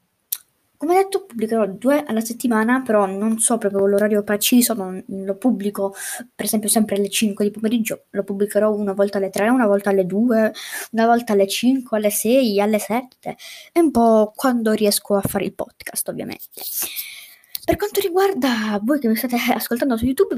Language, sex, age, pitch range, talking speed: Italian, female, 20-39, 205-265 Hz, 175 wpm